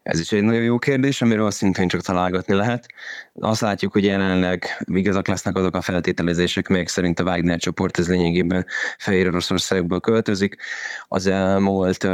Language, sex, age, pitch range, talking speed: Hungarian, male, 20-39, 90-100 Hz, 155 wpm